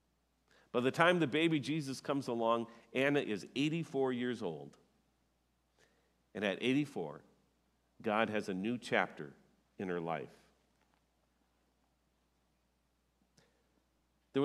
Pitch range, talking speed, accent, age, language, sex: 95-150 Hz, 105 wpm, American, 50-69, English, male